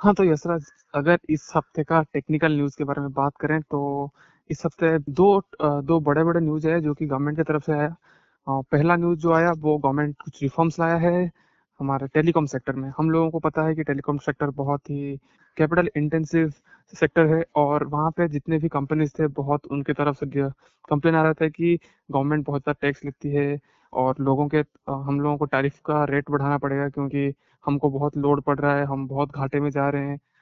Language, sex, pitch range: Hindi, male, 145-160 Hz